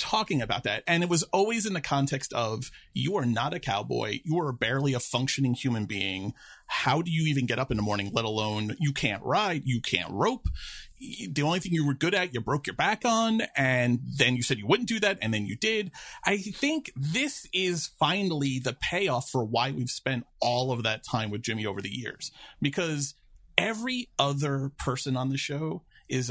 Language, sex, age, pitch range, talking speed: English, male, 30-49, 120-155 Hz, 210 wpm